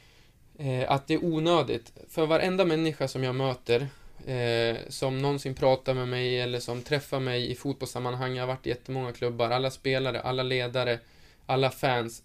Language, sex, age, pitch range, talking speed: Swedish, male, 20-39, 120-140 Hz, 165 wpm